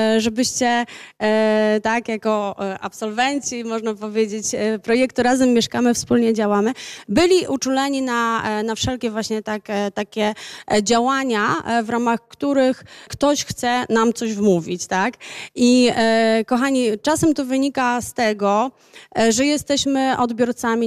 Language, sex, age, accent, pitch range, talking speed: Polish, female, 30-49, native, 225-265 Hz, 110 wpm